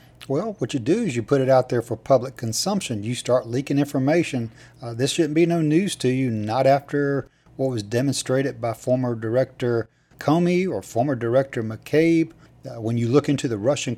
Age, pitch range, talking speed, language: 40-59, 115-150 Hz, 195 wpm, English